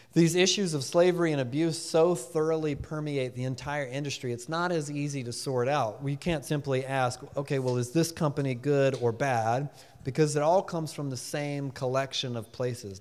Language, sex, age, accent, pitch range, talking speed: English, male, 30-49, American, 120-150 Hz, 190 wpm